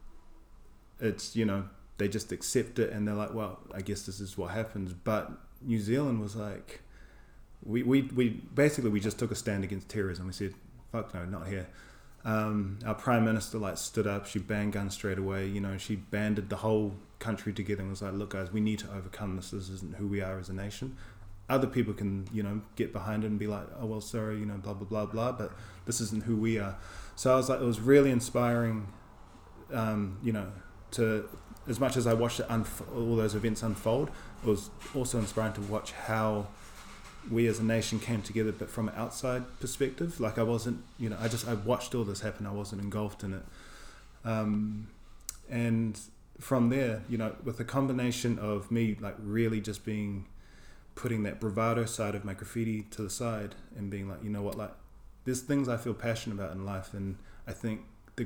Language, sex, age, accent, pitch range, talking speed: English, male, 20-39, Australian, 100-115 Hz, 210 wpm